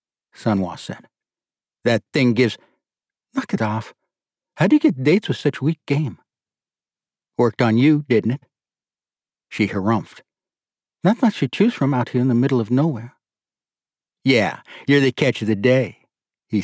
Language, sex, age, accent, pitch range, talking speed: English, male, 60-79, American, 105-135 Hz, 160 wpm